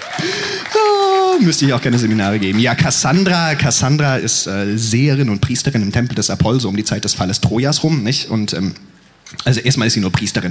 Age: 30-49